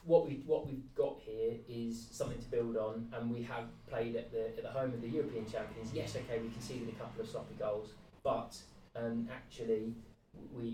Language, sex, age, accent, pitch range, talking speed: English, male, 20-39, British, 115-125 Hz, 205 wpm